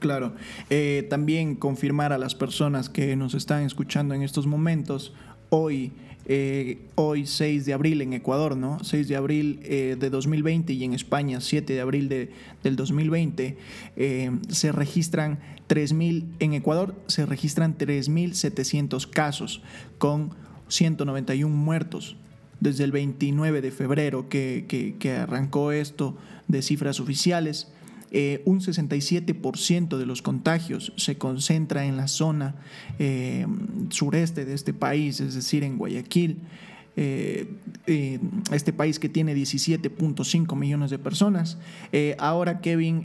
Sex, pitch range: male, 140-165 Hz